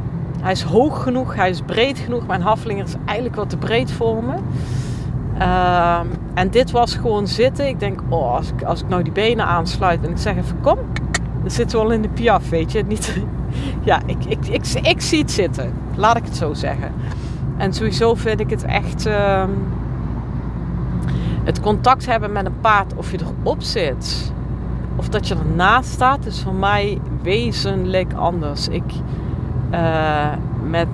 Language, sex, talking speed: Dutch, female, 180 wpm